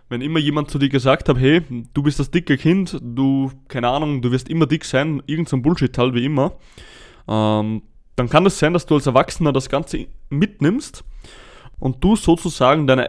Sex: male